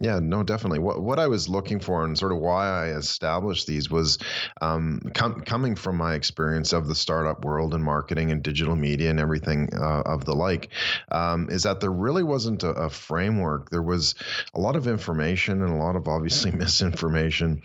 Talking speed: 200 wpm